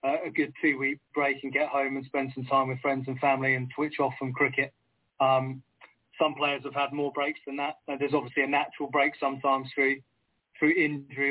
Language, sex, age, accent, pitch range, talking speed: English, male, 20-39, British, 130-140 Hz, 210 wpm